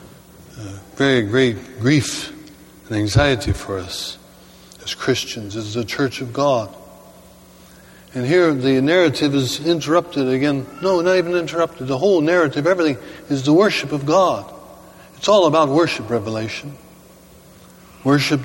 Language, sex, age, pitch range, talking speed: German, male, 60-79, 105-140 Hz, 135 wpm